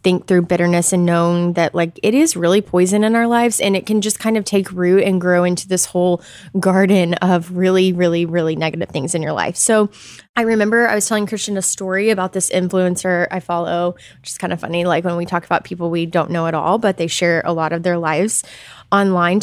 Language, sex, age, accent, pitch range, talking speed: English, female, 20-39, American, 175-210 Hz, 235 wpm